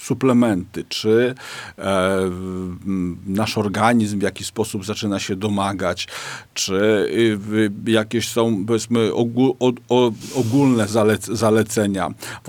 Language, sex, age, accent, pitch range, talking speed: Polish, male, 50-69, native, 110-120 Hz, 80 wpm